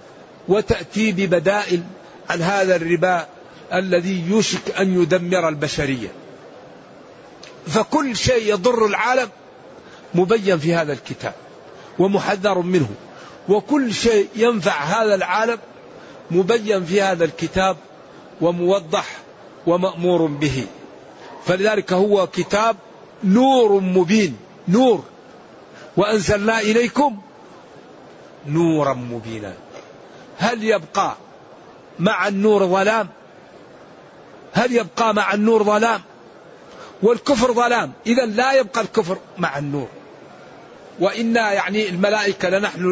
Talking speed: 90 wpm